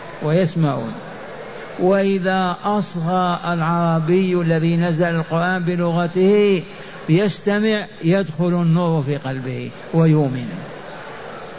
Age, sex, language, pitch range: 50-69, male, Arabic, 165-200 Hz